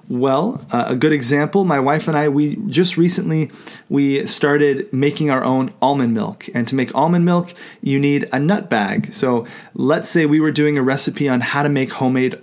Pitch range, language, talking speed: 130-155 Hz, English, 205 wpm